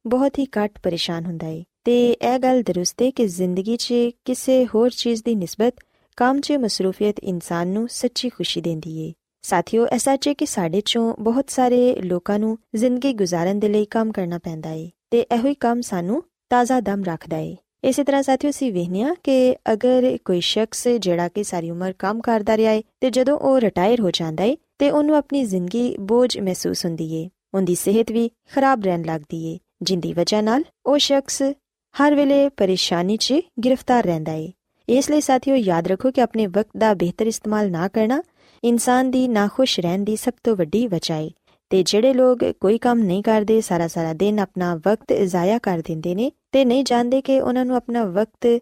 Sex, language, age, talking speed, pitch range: female, Punjabi, 20-39, 175 wpm, 185-255 Hz